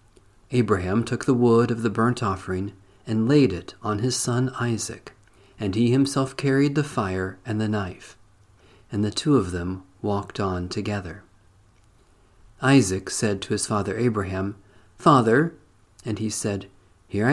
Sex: male